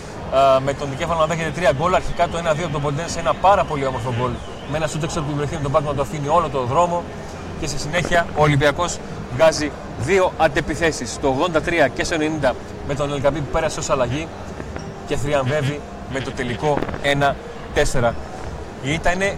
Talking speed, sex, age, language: 190 wpm, male, 30-49, Greek